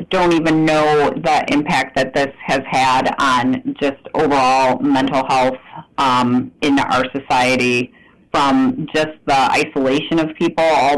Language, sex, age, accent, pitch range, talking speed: English, female, 30-49, American, 135-155 Hz, 135 wpm